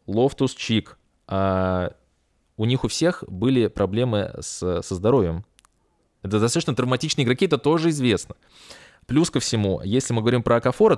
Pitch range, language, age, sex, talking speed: 100-130 Hz, Russian, 20-39, male, 135 wpm